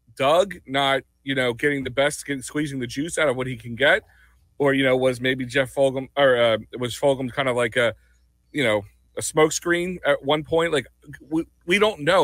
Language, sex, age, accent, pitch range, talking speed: English, male, 40-59, American, 125-160 Hz, 220 wpm